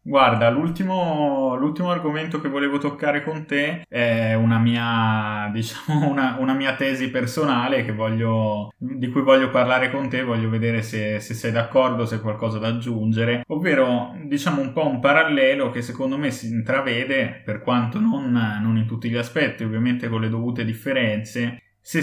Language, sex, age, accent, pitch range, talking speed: Italian, male, 20-39, native, 110-130 Hz, 170 wpm